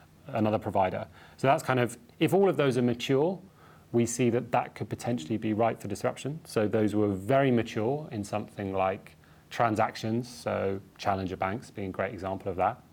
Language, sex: English, male